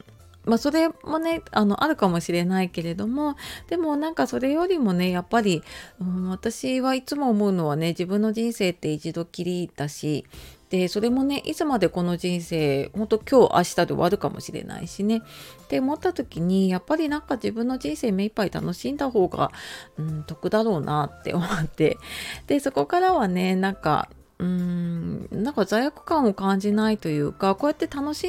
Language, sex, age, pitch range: Japanese, female, 30-49, 170-235 Hz